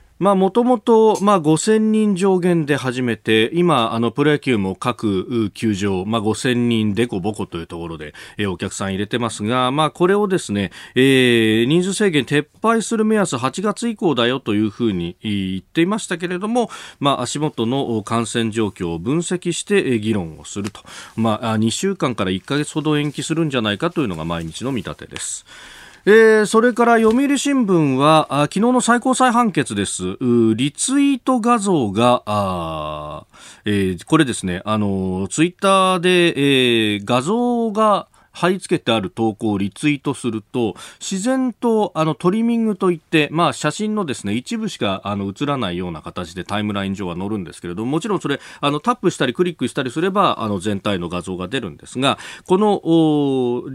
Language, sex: Japanese, male